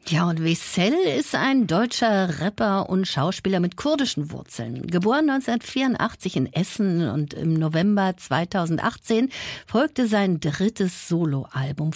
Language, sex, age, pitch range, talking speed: German, female, 50-69, 160-220 Hz, 120 wpm